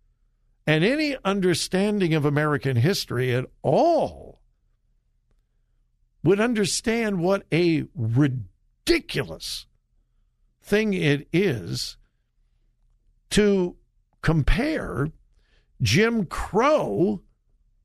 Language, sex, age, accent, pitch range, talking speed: English, male, 60-79, American, 130-200 Hz, 65 wpm